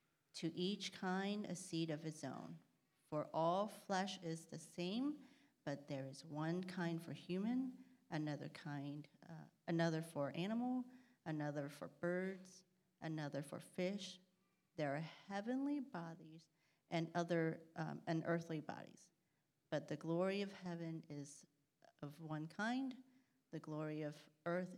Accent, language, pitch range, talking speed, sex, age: American, English, 160-190 Hz, 130 wpm, female, 40-59